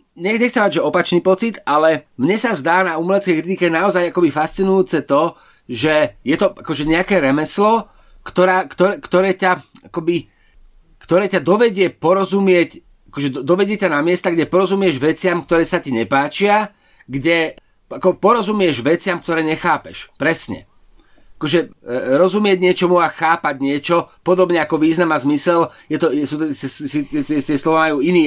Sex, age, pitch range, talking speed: male, 30-49, 155-190 Hz, 140 wpm